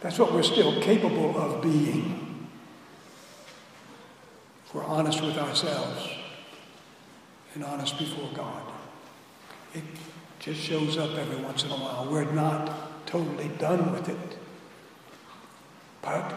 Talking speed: 115 wpm